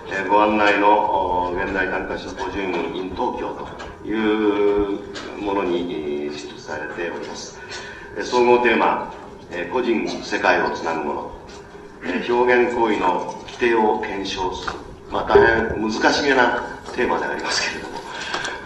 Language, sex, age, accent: Japanese, male, 40-59, native